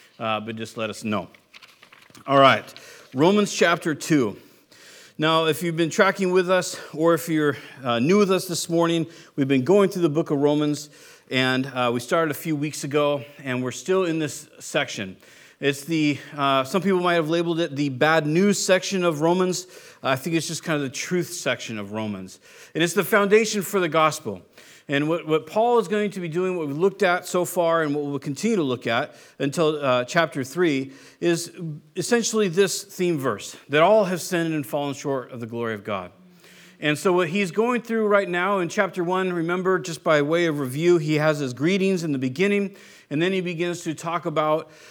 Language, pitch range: English, 145-185 Hz